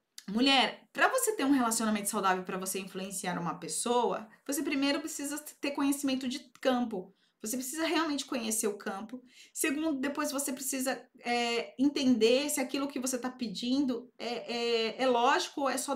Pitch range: 220-280 Hz